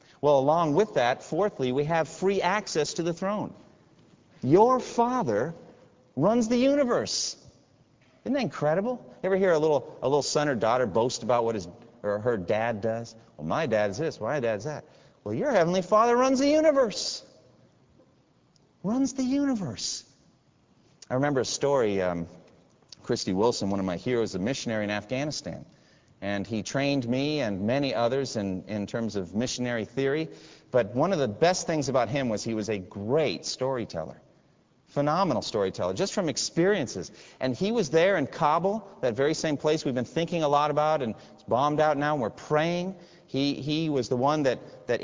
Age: 40-59